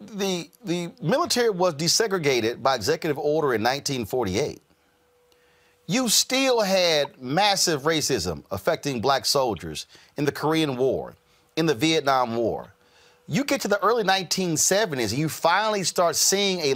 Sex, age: male, 40-59